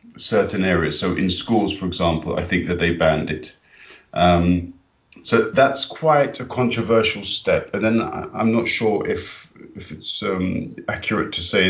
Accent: British